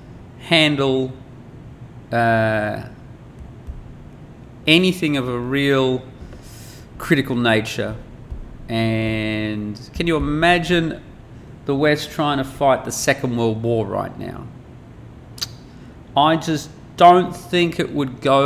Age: 30-49